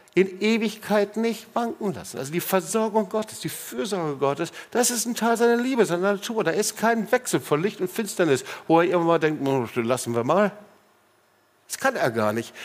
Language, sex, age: German, male, 60-79